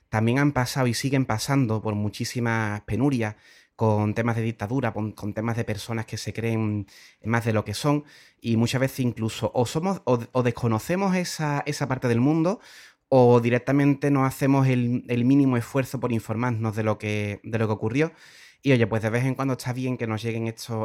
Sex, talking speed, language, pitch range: male, 200 wpm, Spanish, 110-125 Hz